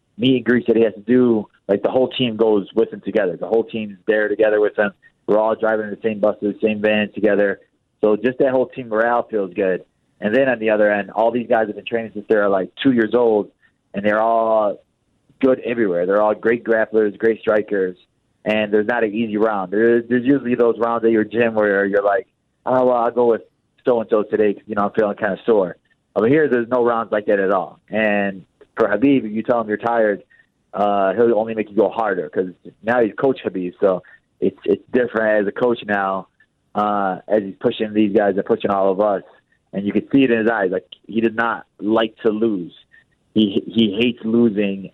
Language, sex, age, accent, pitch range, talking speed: English, male, 30-49, American, 105-120 Hz, 230 wpm